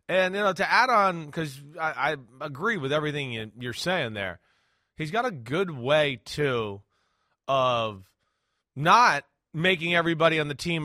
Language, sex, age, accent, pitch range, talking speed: English, male, 30-49, American, 145-185 Hz, 160 wpm